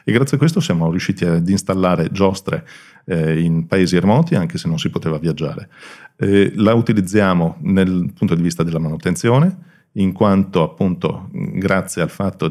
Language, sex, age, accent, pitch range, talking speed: Italian, male, 40-59, native, 90-130 Hz, 165 wpm